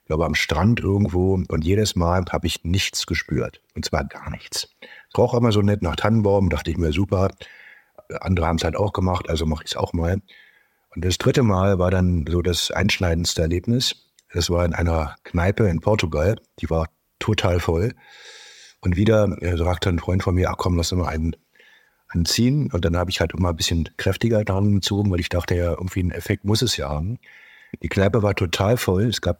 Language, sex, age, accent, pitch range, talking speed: German, male, 50-69, German, 85-105 Hz, 210 wpm